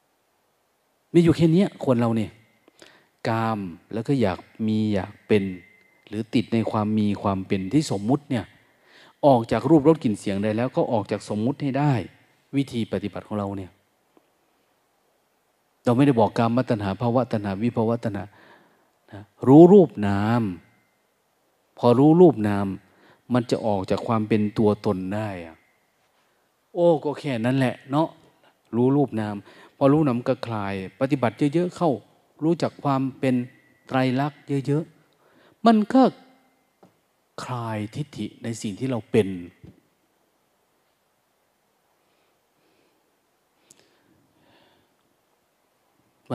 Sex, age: male, 30-49